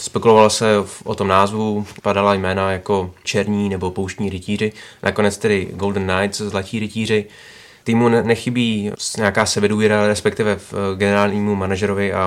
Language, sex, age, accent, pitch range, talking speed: Czech, male, 20-39, native, 95-105 Hz, 125 wpm